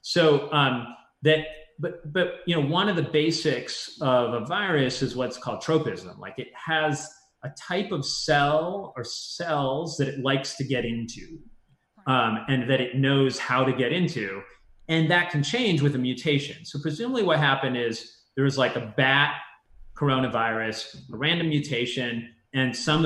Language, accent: English, American